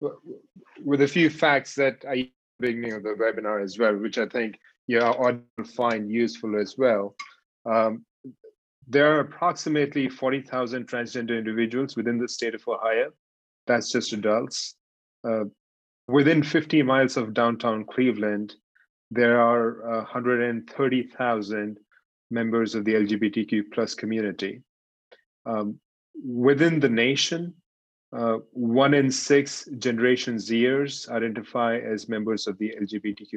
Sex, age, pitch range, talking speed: male, 30-49, 110-130 Hz, 120 wpm